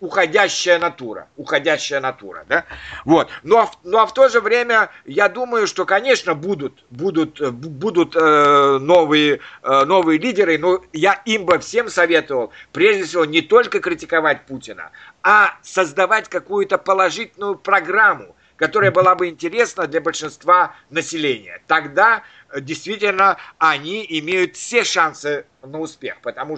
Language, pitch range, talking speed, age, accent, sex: Russian, 150-190 Hz, 135 wpm, 50-69, native, male